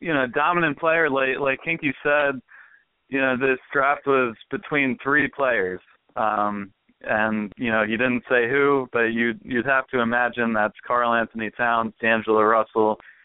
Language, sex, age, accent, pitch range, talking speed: English, male, 30-49, American, 115-130 Hz, 165 wpm